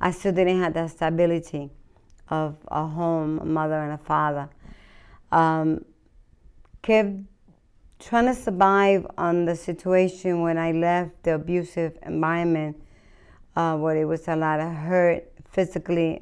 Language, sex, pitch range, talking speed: English, female, 155-175 Hz, 135 wpm